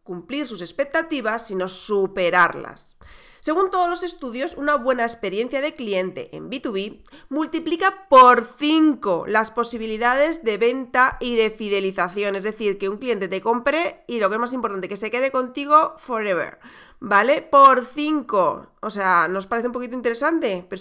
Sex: female